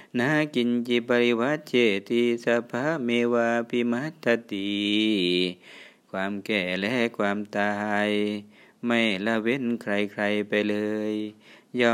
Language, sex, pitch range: Thai, male, 105-120 Hz